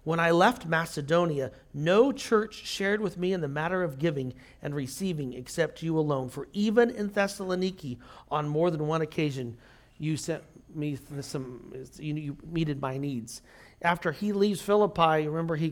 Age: 40-59